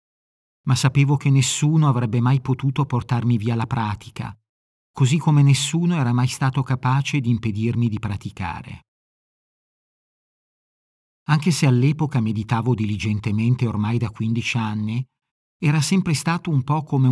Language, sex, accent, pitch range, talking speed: Italian, male, native, 115-135 Hz, 130 wpm